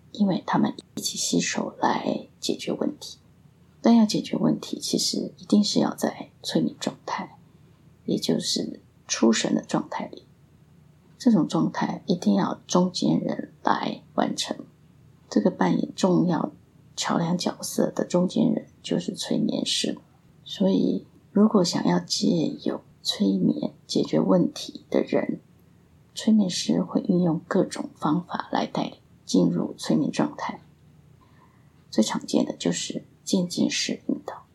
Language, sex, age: Chinese, female, 30-49